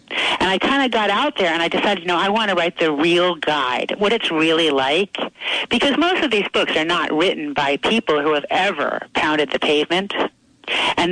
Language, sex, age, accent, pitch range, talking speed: English, female, 50-69, American, 170-230 Hz, 215 wpm